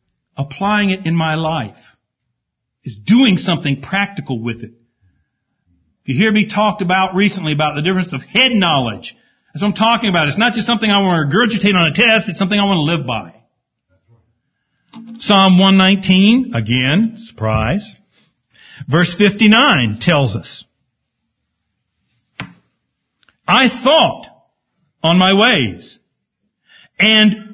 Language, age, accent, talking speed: English, 60-79, American, 135 wpm